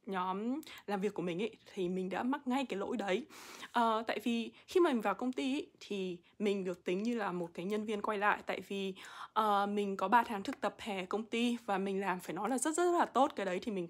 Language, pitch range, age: Vietnamese, 195-260 Hz, 20-39